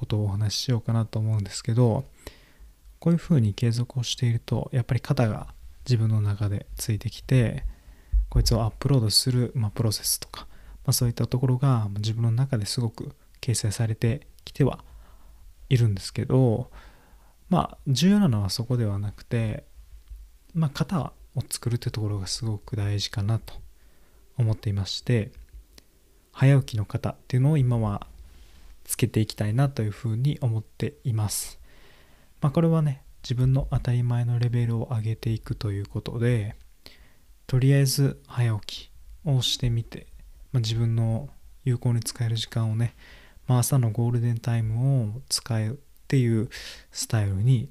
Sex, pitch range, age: male, 100-125 Hz, 20-39